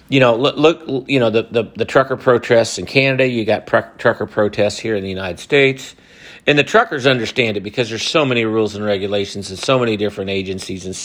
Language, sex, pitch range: English, male, 100-120 Hz